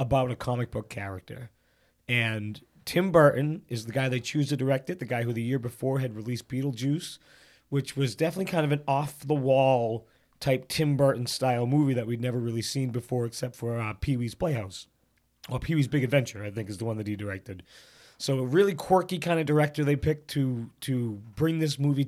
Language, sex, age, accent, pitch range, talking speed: English, male, 30-49, American, 120-145 Hz, 200 wpm